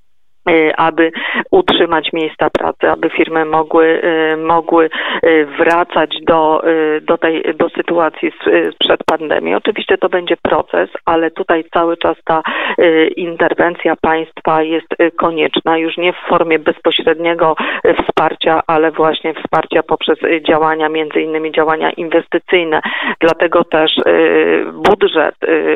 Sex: female